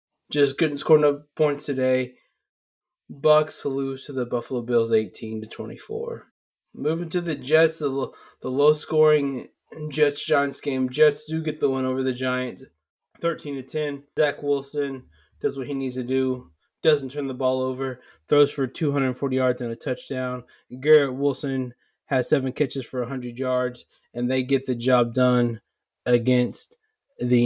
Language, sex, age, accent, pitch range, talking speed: English, male, 20-39, American, 125-155 Hz, 165 wpm